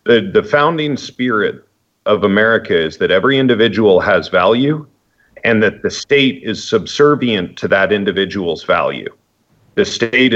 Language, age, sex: English, 50-69, male